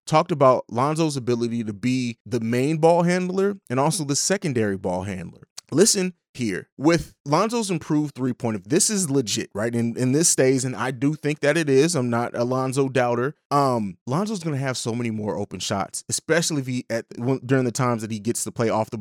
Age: 20-39